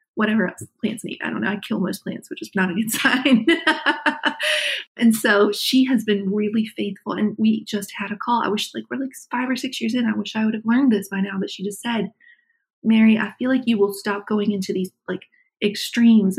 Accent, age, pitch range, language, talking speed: American, 30-49, 195-245 Hz, English, 240 wpm